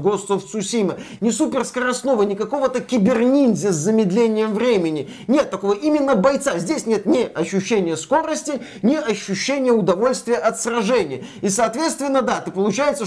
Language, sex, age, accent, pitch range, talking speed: Russian, male, 20-39, native, 170-235 Hz, 135 wpm